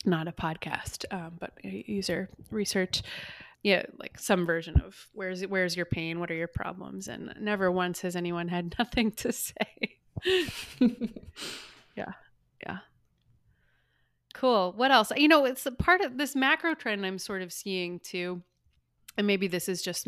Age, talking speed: 20-39, 160 wpm